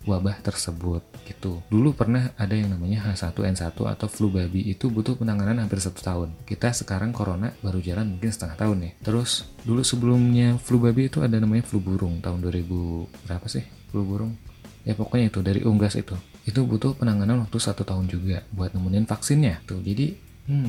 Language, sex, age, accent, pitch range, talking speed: Indonesian, male, 30-49, native, 95-120 Hz, 185 wpm